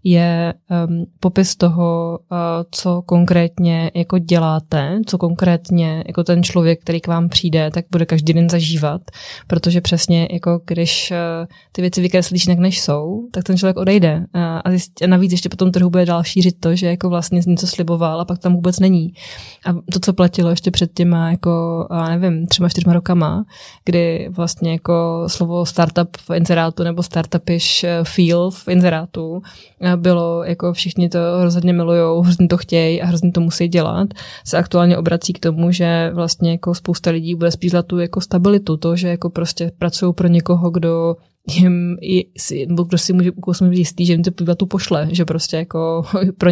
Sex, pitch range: female, 170-180 Hz